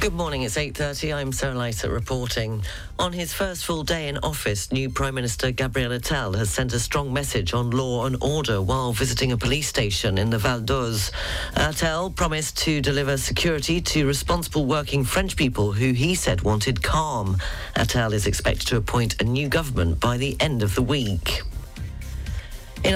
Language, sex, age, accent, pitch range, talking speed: English, female, 40-59, British, 115-150 Hz, 180 wpm